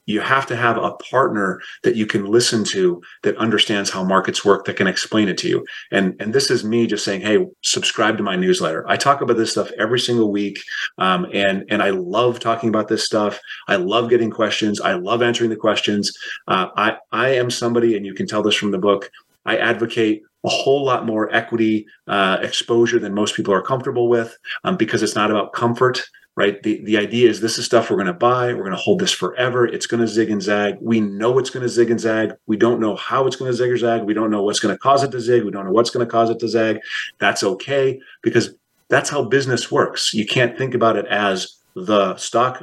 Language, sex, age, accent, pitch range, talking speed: English, male, 30-49, American, 105-120 Hz, 240 wpm